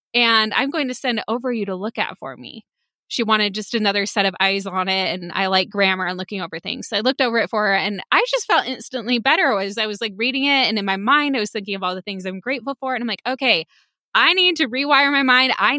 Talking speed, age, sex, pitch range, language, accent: 280 wpm, 20-39, female, 200-260 Hz, English, American